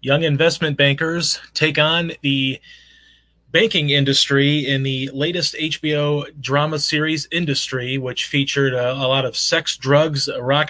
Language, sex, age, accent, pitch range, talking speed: English, male, 30-49, American, 130-145 Hz, 135 wpm